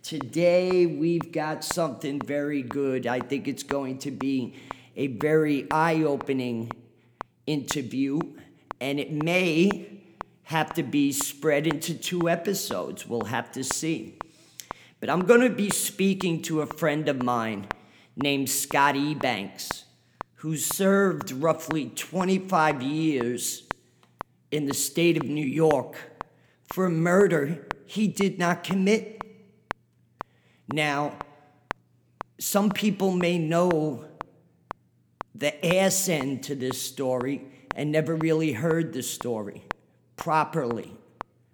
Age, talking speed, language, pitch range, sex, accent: 50-69, 115 wpm, English, 140-175 Hz, male, American